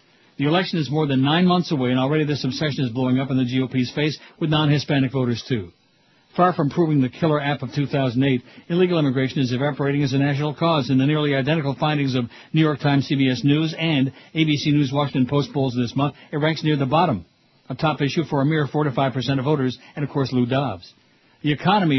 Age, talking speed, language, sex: 60-79, 225 wpm, English, male